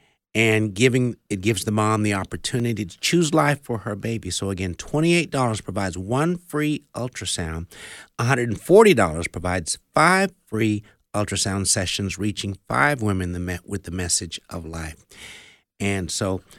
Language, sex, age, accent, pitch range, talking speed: English, male, 60-79, American, 95-125 Hz, 155 wpm